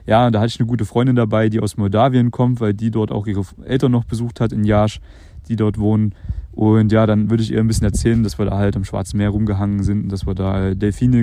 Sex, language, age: male, German, 30-49